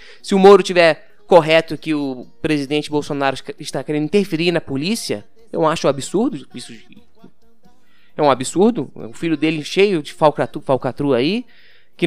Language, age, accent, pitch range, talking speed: Portuguese, 20-39, Brazilian, 150-230 Hz, 155 wpm